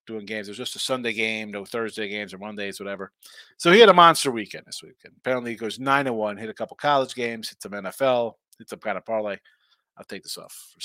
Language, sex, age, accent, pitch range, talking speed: English, male, 30-49, American, 110-135 Hz, 250 wpm